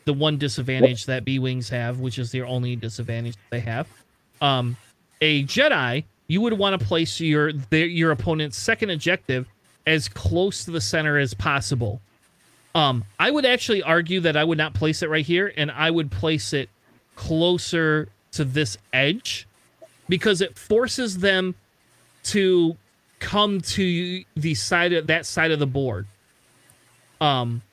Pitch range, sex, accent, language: 135-190 Hz, male, American, English